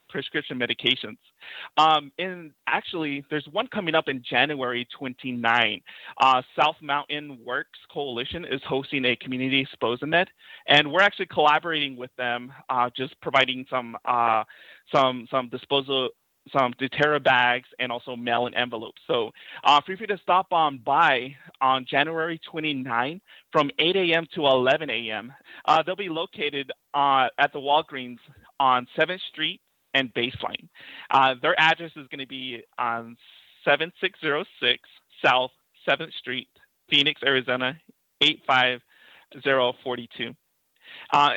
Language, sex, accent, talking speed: English, male, American, 130 wpm